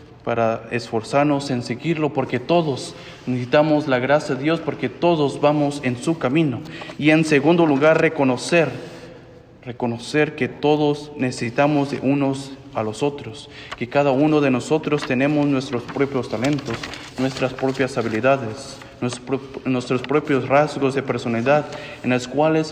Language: English